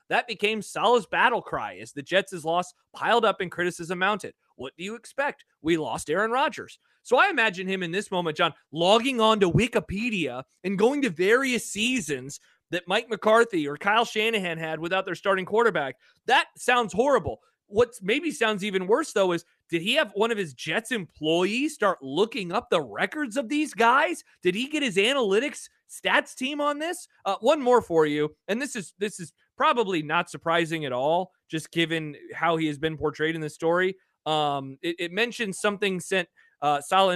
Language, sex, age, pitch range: English, male, 30-49, 155-215 Hz